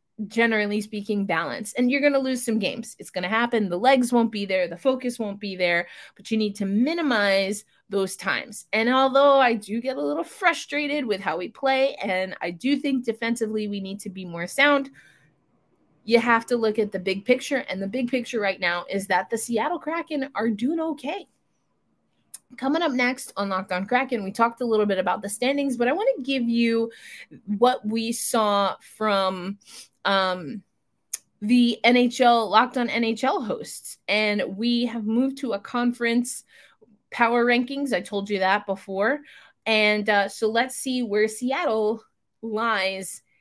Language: English